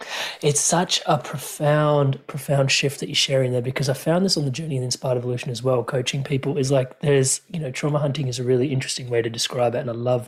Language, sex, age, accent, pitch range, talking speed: English, male, 30-49, Australian, 130-160 Hz, 245 wpm